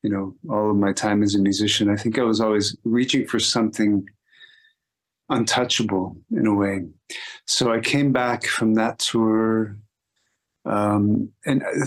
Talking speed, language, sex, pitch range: 150 wpm, English, male, 105-120 Hz